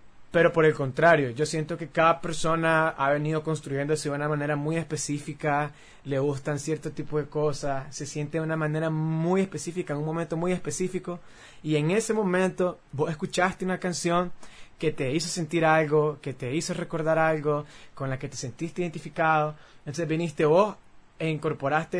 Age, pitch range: 20-39, 140-165 Hz